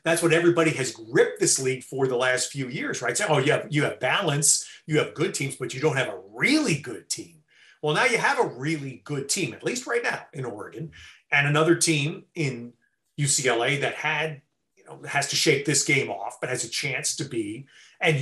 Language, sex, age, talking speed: English, male, 30-49, 220 wpm